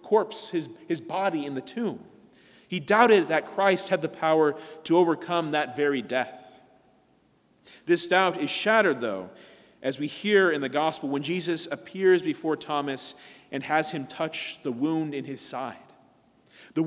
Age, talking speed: 30-49, 160 wpm